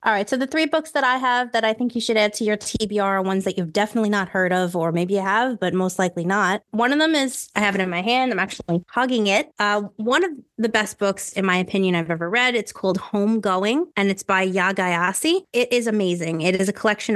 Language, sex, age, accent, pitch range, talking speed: English, female, 20-39, American, 180-220 Hz, 260 wpm